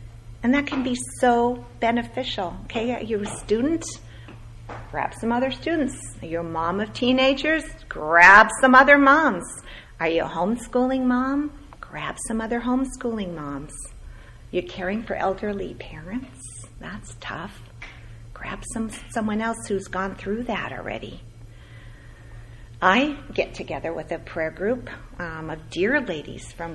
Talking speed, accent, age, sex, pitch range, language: 145 wpm, American, 50-69, female, 160-255 Hz, English